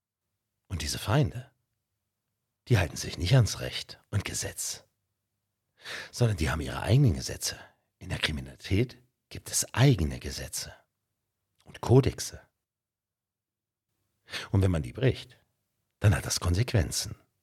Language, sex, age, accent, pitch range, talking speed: German, male, 50-69, German, 100-120 Hz, 115 wpm